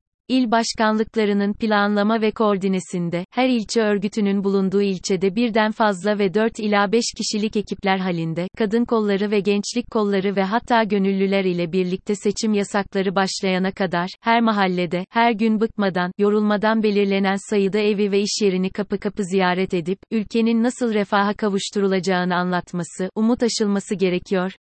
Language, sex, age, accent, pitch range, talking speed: Turkish, female, 30-49, native, 190-220 Hz, 140 wpm